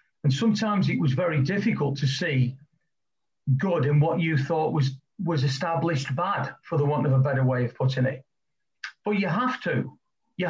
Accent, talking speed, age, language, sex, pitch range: British, 185 wpm, 40-59, English, male, 135-180 Hz